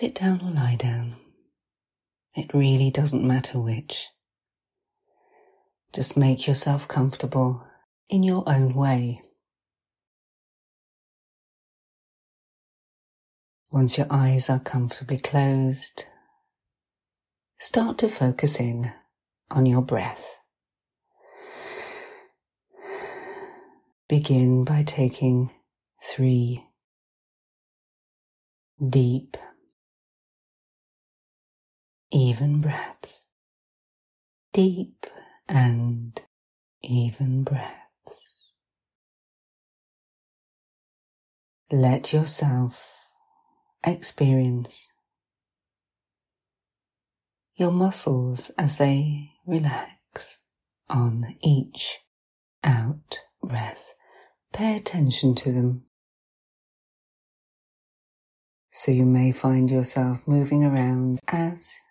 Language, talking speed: English, 65 wpm